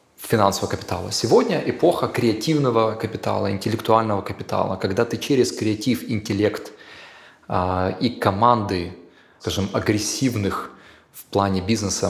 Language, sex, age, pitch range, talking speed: Russian, male, 20-39, 100-135 Hz, 105 wpm